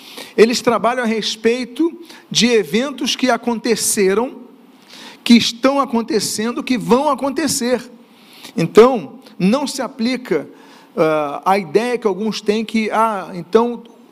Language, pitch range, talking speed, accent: Portuguese, 215-255 Hz, 115 wpm, Brazilian